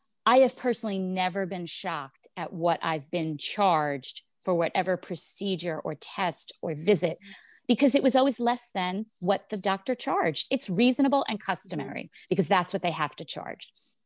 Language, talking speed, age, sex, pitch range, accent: English, 165 wpm, 30-49, female, 165-240 Hz, American